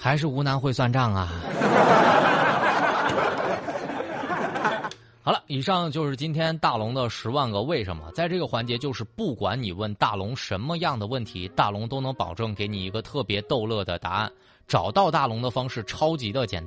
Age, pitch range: 20-39, 105-165 Hz